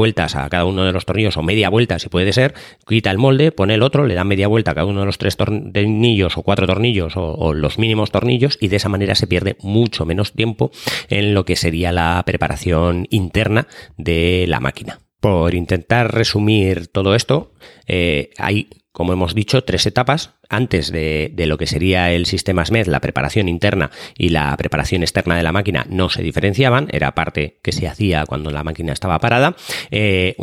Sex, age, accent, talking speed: male, 30-49, Spanish, 200 wpm